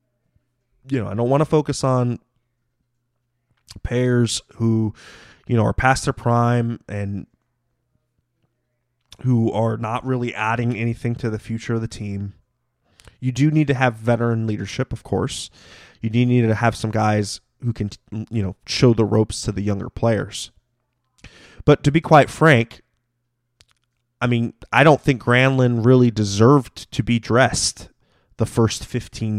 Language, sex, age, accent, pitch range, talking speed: English, male, 20-39, American, 110-130 Hz, 155 wpm